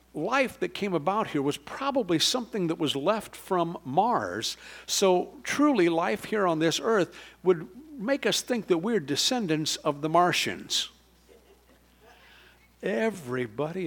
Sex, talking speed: male, 135 wpm